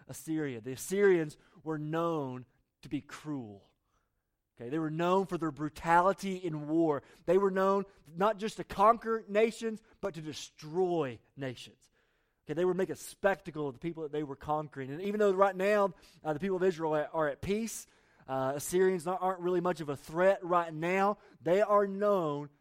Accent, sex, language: American, male, English